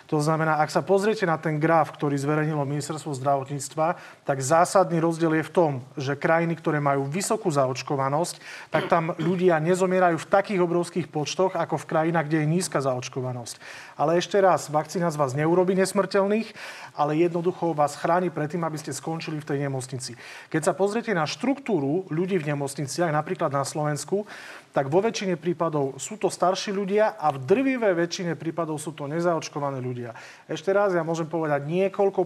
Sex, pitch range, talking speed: male, 145-175 Hz, 175 wpm